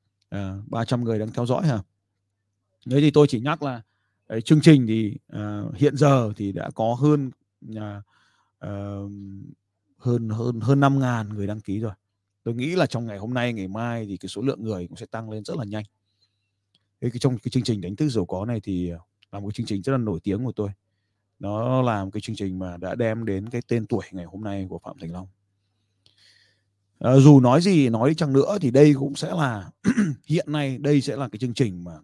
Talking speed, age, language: 225 wpm, 20-39, Vietnamese